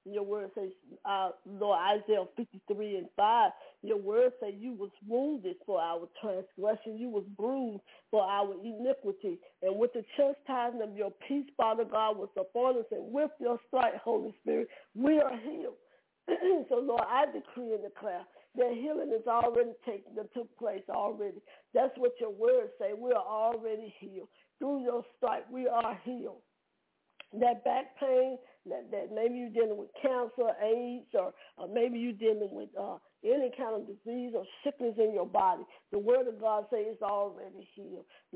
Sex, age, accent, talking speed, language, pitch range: female, 50-69, American, 170 wpm, English, 205-260 Hz